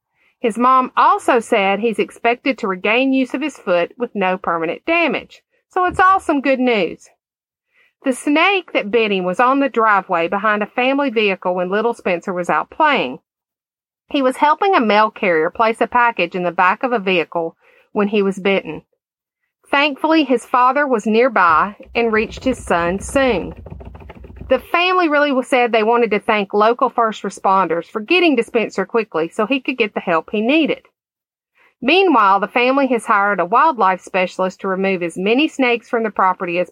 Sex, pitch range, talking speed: female, 195-280 Hz, 180 wpm